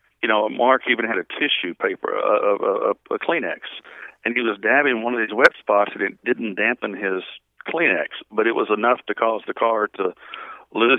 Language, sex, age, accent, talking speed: English, male, 60-79, American, 200 wpm